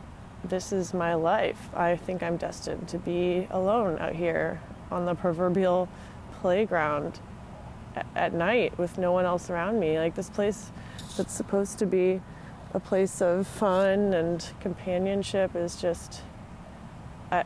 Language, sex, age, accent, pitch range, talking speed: English, female, 20-39, American, 170-195 Hz, 145 wpm